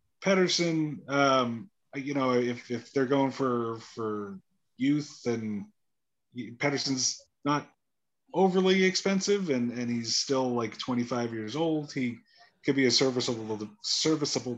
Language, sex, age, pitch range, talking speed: English, male, 30-49, 115-140 Hz, 125 wpm